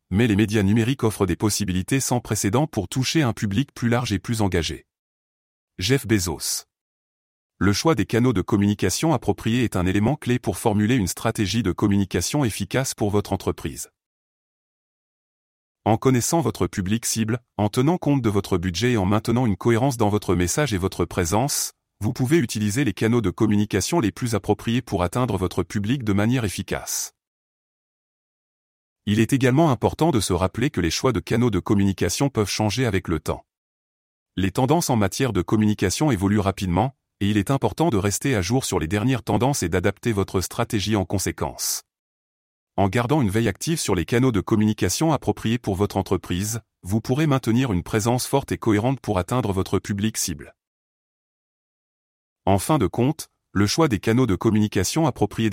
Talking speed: 175 wpm